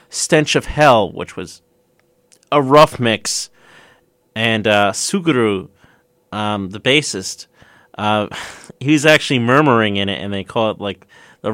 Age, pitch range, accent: 30-49, 105-125 Hz, American